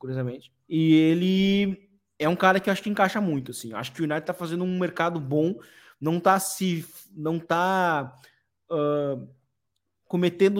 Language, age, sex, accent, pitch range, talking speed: Portuguese, 20-39, male, Brazilian, 135-175 Hz, 170 wpm